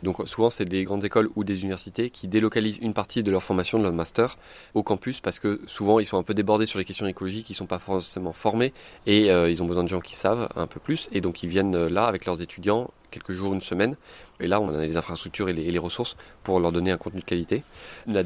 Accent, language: French, French